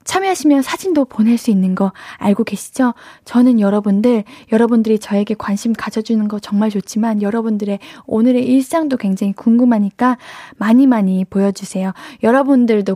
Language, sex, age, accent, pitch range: Korean, female, 10-29, native, 210-285 Hz